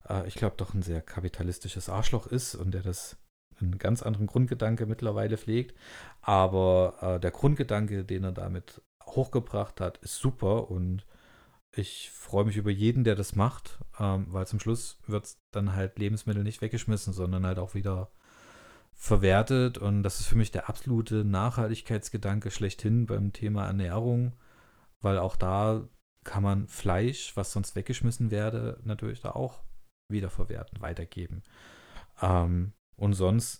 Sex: male